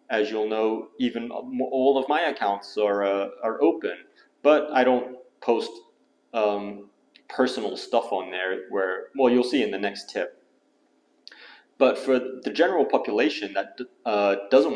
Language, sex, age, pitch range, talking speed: English, male, 30-49, 105-140 Hz, 150 wpm